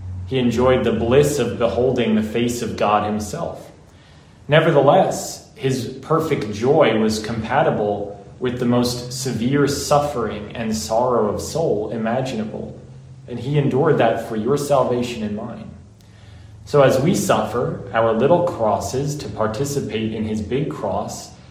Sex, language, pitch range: male, English, 105-125 Hz